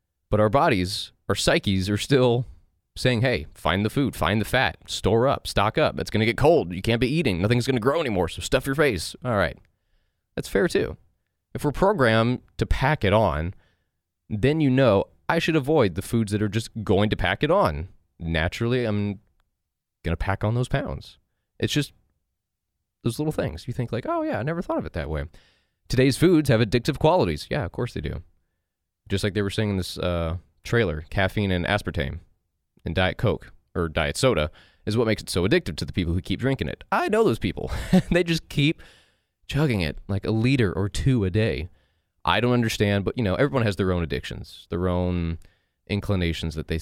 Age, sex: 20-39, male